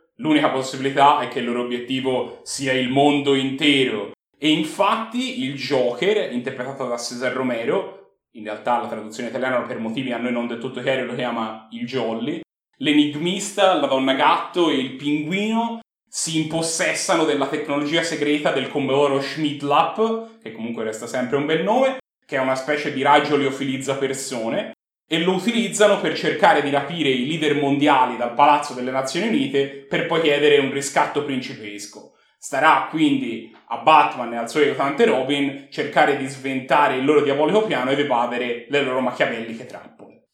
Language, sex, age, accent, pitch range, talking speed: Italian, male, 30-49, native, 130-160 Hz, 160 wpm